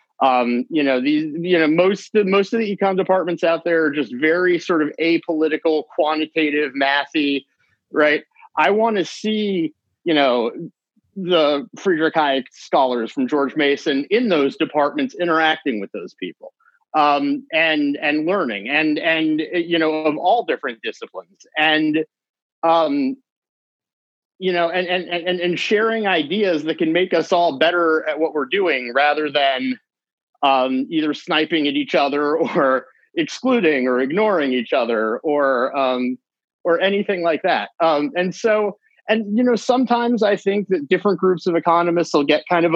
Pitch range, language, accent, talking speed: 150-190 Hz, English, American, 160 wpm